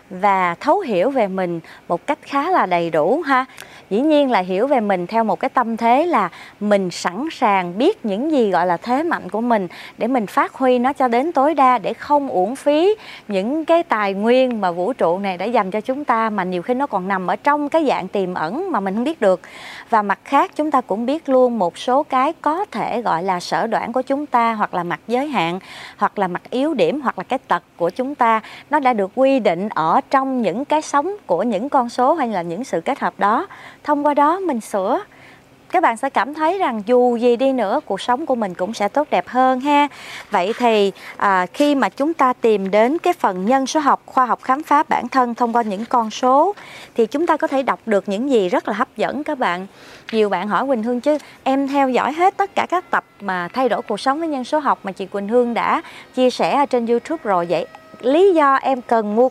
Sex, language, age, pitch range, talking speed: female, Vietnamese, 20-39, 200-285 Hz, 245 wpm